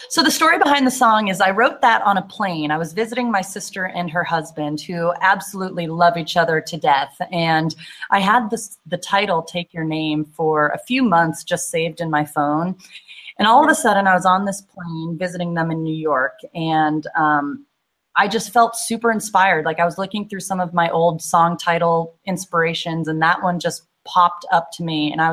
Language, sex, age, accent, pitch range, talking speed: English, female, 30-49, American, 160-195 Hz, 210 wpm